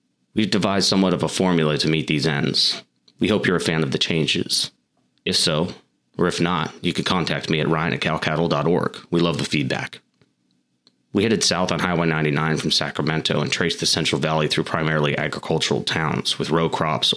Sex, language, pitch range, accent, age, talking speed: male, English, 75-90 Hz, American, 30-49, 190 wpm